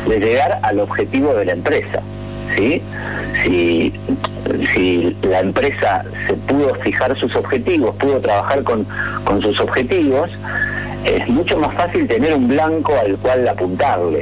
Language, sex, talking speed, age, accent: Spanish, male, 140 wpm, 50-69, Argentinian